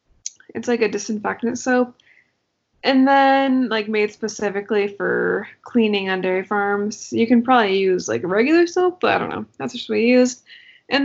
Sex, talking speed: female, 180 wpm